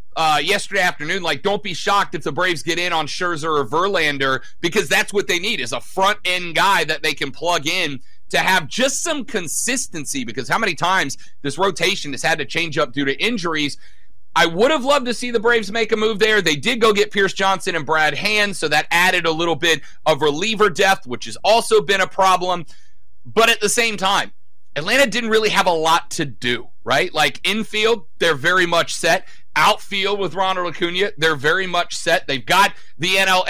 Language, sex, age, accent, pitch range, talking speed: English, male, 40-59, American, 160-215 Hz, 210 wpm